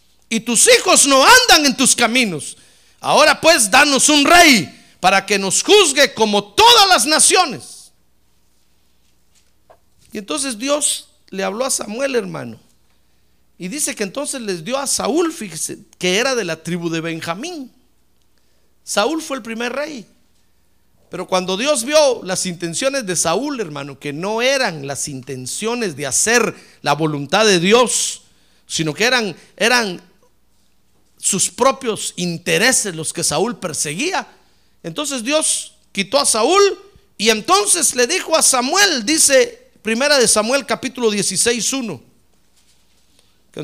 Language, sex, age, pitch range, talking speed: Spanish, male, 50-69, 180-275 Hz, 135 wpm